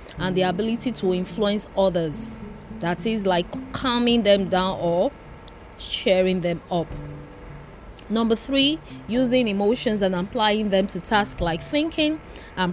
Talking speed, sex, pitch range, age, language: 130 wpm, female, 175-230 Hz, 20-39, English